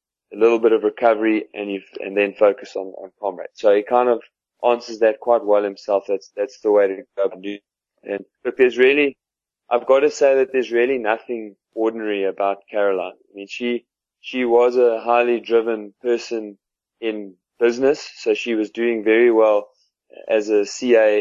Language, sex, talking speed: English, male, 180 wpm